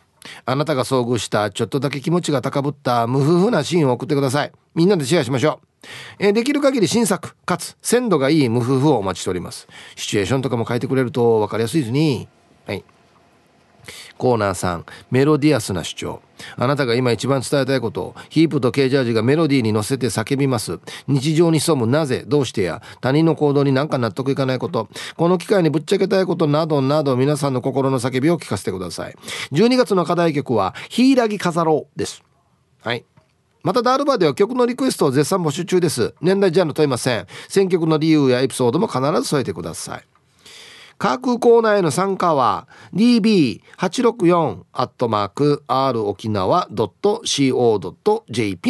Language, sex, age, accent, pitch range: Japanese, male, 40-59, native, 125-175 Hz